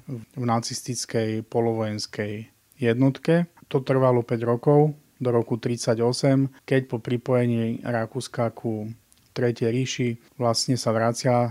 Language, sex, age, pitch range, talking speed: Slovak, male, 30-49, 115-130 Hz, 110 wpm